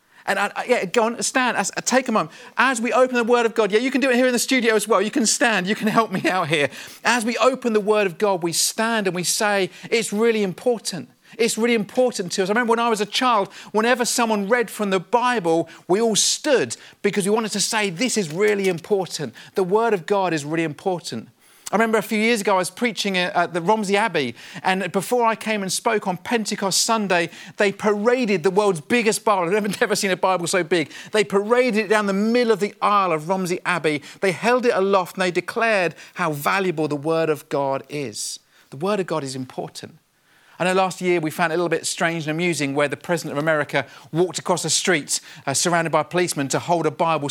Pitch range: 160-215 Hz